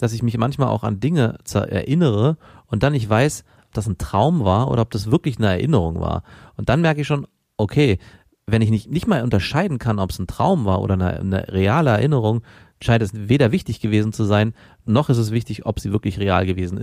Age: 40-59